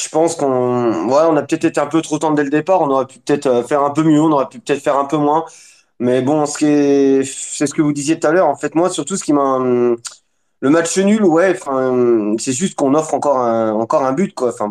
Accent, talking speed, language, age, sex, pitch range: French, 265 wpm, French, 20-39, male, 125-160 Hz